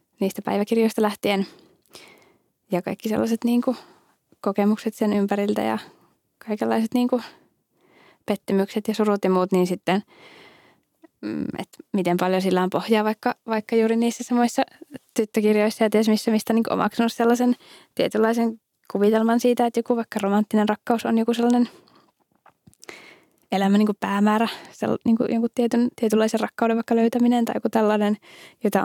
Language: Finnish